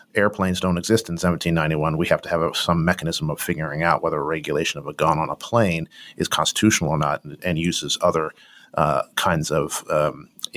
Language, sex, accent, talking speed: English, male, American, 195 wpm